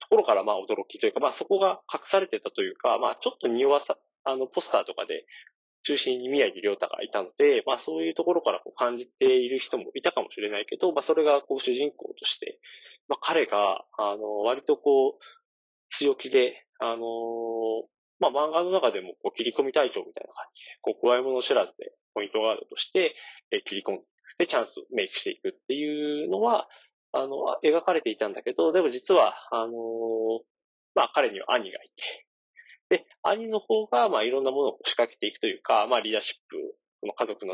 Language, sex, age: Japanese, male, 20-39